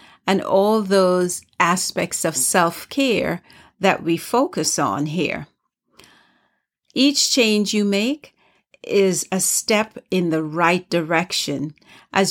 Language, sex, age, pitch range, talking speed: English, female, 50-69, 165-220 Hz, 110 wpm